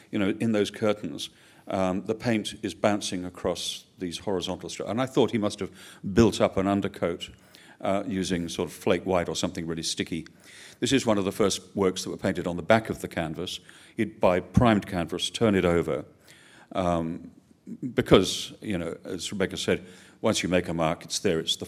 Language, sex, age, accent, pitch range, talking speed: English, male, 50-69, British, 85-105 Hz, 200 wpm